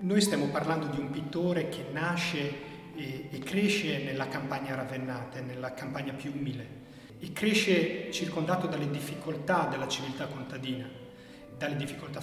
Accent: native